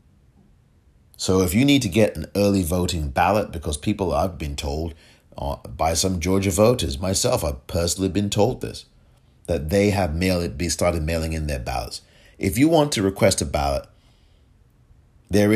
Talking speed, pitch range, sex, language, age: 160 wpm, 80-105 Hz, male, English, 40-59